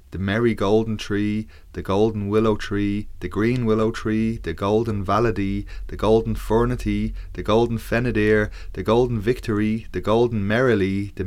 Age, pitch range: 20-39, 95-110 Hz